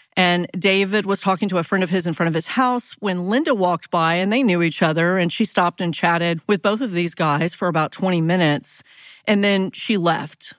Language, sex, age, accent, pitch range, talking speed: English, female, 40-59, American, 170-215 Hz, 230 wpm